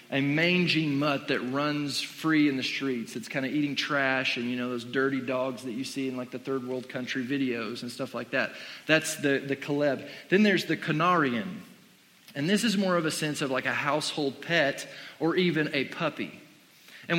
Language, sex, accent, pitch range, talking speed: English, male, American, 135-175 Hz, 205 wpm